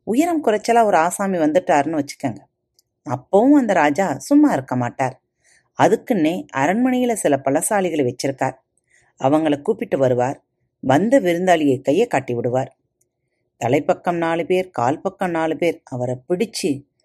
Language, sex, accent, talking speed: Tamil, female, native, 115 wpm